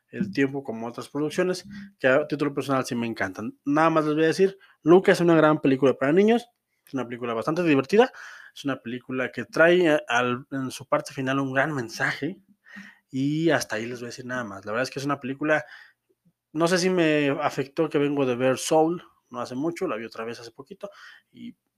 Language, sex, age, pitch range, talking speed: Spanish, male, 20-39, 130-175 Hz, 220 wpm